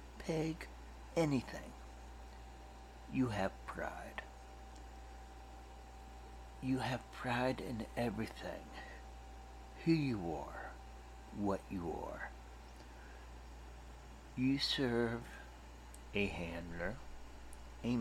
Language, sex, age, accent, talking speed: English, male, 60-79, American, 70 wpm